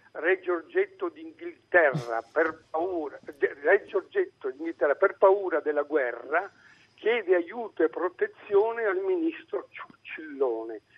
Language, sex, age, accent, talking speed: Italian, male, 60-79, native, 100 wpm